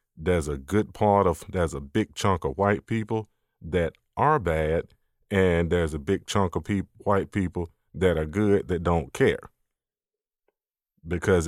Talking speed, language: 155 wpm, English